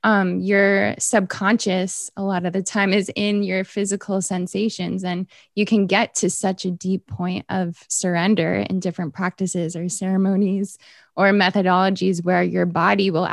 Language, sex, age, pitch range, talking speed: English, female, 20-39, 180-200 Hz, 160 wpm